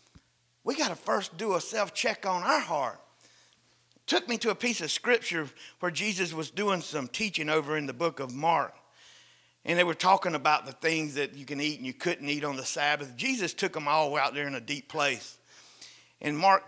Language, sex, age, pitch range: English, male, 50-69, 145-195 Hz